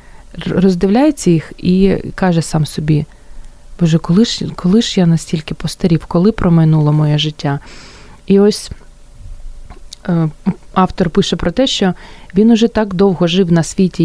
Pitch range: 165-215 Hz